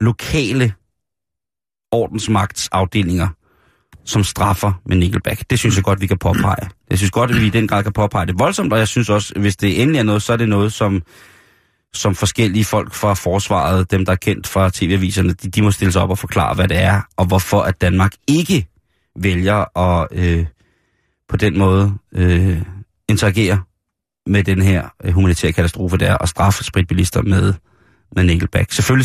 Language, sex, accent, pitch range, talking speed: Danish, male, native, 95-110 Hz, 185 wpm